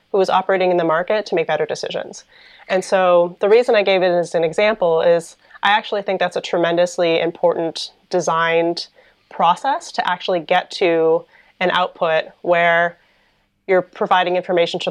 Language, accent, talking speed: English, American, 160 wpm